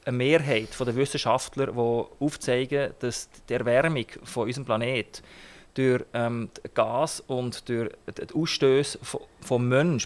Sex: male